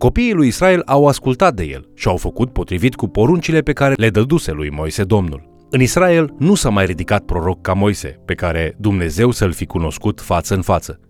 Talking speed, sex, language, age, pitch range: 205 wpm, male, Romanian, 30-49, 90-120 Hz